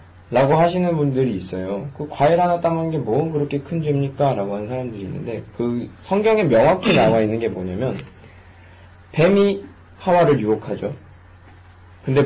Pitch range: 100-150 Hz